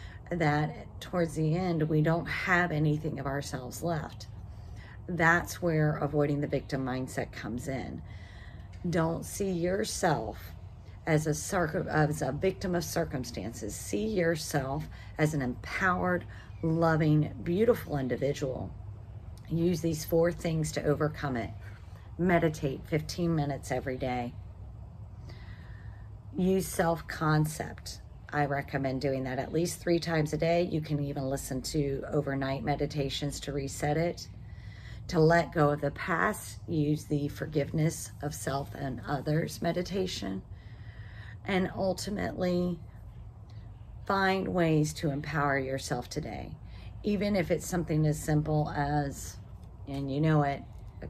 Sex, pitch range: female, 110-160 Hz